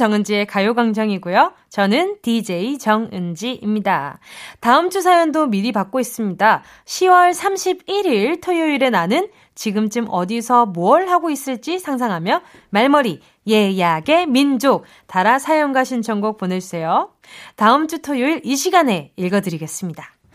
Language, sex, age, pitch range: Korean, female, 20-39, 205-315 Hz